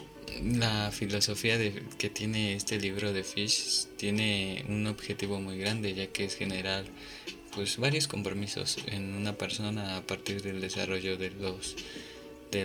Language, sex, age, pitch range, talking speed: Spanish, male, 20-39, 95-105 Hz, 145 wpm